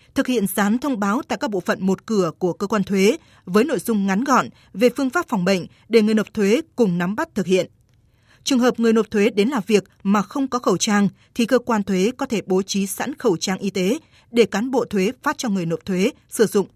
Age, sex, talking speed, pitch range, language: 20-39, female, 255 wpm, 190-245 Hz, Vietnamese